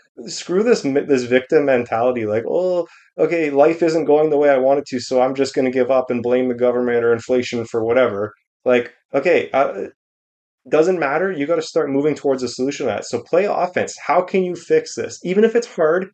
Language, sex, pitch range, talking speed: English, male, 110-140 Hz, 215 wpm